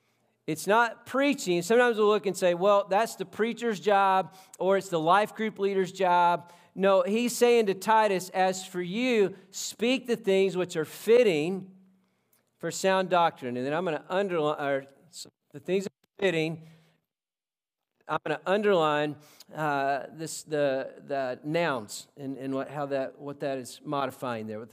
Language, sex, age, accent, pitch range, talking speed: English, male, 40-59, American, 155-200 Hz, 165 wpm